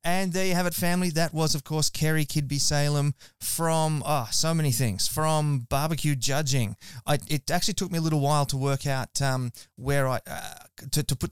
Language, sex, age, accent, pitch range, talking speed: English, male, 20-39, Australian, 125-145 Hz, 210 wpm